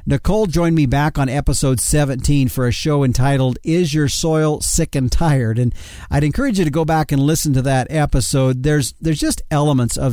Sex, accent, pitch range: male, American, 130-155 Hz